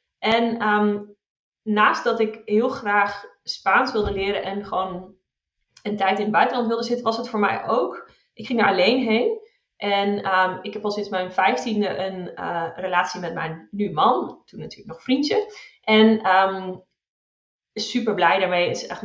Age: 30-49